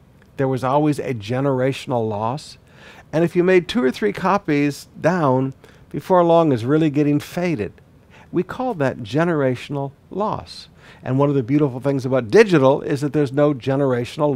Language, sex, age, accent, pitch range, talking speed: English, male, 50-69, American, 125-160 Hz, 165 wpm